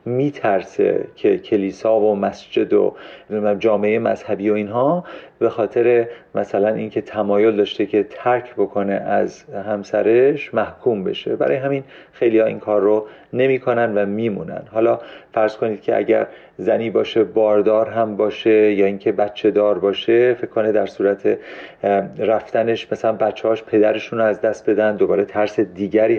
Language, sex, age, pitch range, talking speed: Persian, male, 40-59, 105-140 Hz, 140 wpm